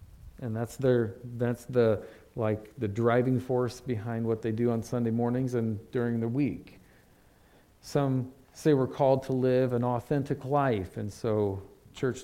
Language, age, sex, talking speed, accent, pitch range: English, 40-59, male, 155 wpm, American, 110-135 Hz